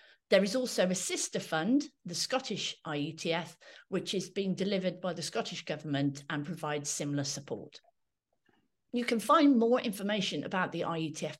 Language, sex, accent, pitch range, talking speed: English, female, British, 160-230 Hz, 155 wpm